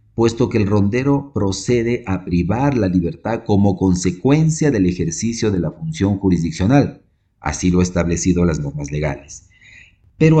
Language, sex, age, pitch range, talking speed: Spanish, male, 40-59, 90-125 Hz, 145 wpm